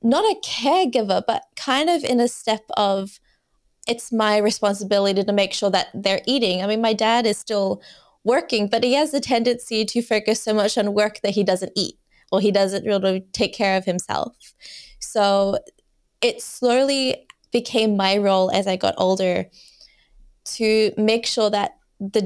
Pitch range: 195-230 Hz